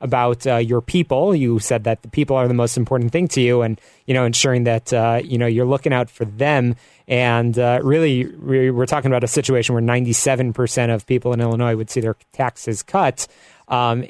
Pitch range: 120-140 Hz